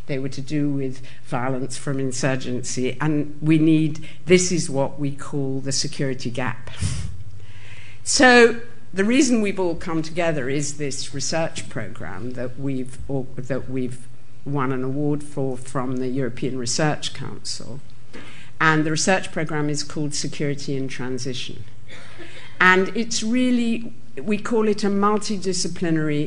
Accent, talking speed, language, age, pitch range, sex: British, 140 wpm, English, 50-69, 125-155 Hz, female